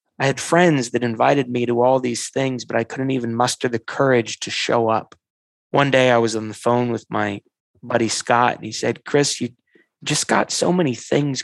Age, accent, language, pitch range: 20-39, American, English, 120-150 Hz